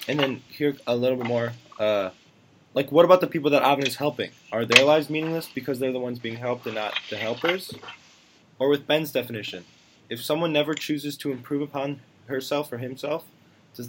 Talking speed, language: 200 wpm, English